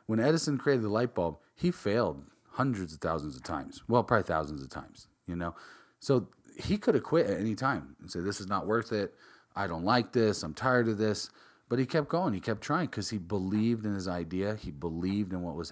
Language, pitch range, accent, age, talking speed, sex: English, 90-115 Hz, American, 40-59, 235 wpm, male